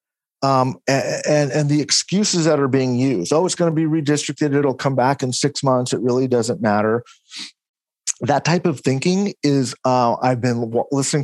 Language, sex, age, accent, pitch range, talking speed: English, male, 40-59, American, 120-150 Hz, 180 wpm